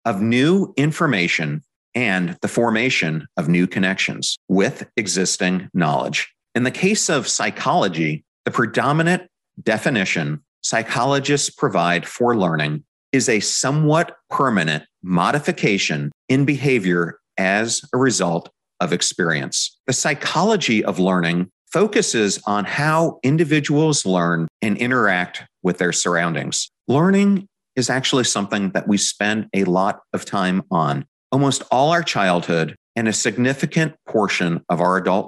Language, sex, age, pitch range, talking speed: English, male, 40-59, 90-140 Hz, 125 wpm